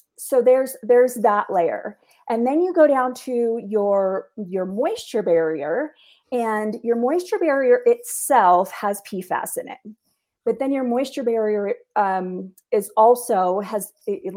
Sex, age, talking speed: female, 30-49, 140 wpm